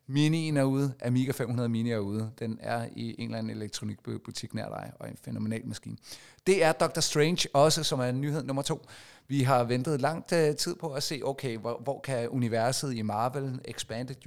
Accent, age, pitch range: native, 30-49, 115-135 Hz